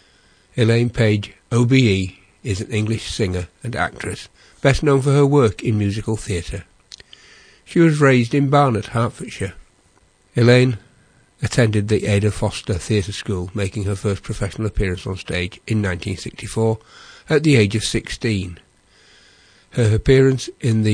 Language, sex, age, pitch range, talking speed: English, male, 60-79, 95-125 Hz, 140 wpm